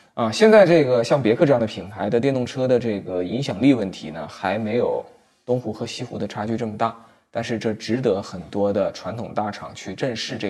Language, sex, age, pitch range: Chinese, male, 20-39, 105-135 Hz